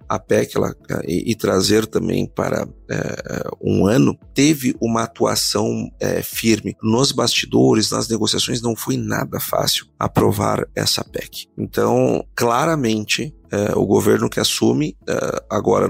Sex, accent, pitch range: male, Brazilian, 105-130 Hz